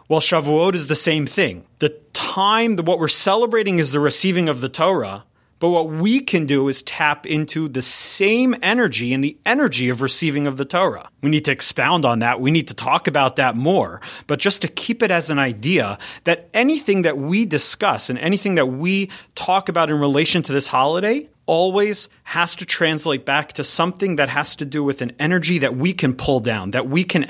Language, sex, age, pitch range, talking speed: English, male, 30-49, 130-175 Hz, 210 wpm